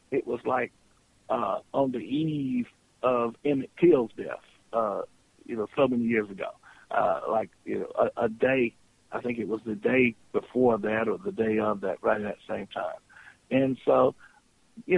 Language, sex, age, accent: English, male, 50-69, American